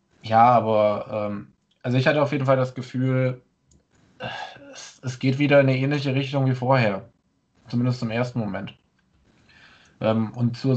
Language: German